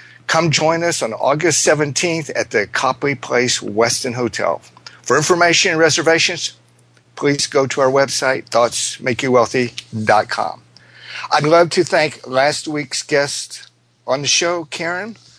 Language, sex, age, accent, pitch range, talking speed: English, male, 50-69, American, 115-155 Hz, 130 wpm